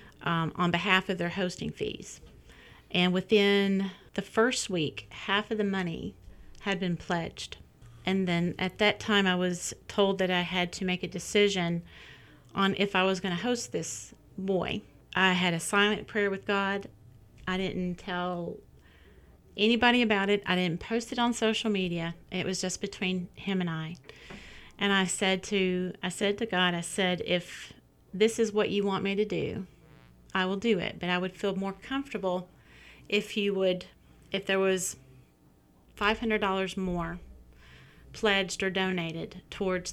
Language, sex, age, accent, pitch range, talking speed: English, female, 40-59, American, 175-200 Hz, 165 wpm